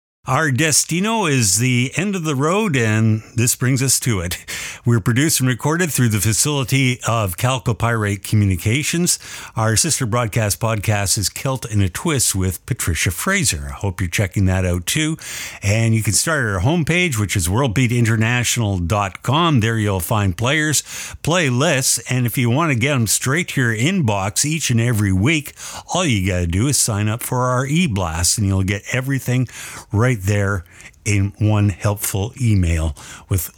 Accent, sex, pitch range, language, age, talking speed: American, male, 100-130 Hz, English, 50-69, 170 wpm